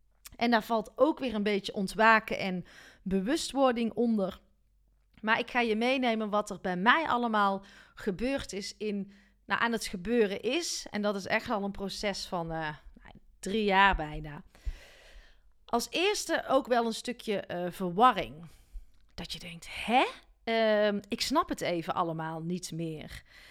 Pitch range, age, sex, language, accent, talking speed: 195-255 Hz, 40-59, female, Dutch, Dutch, 150 wpm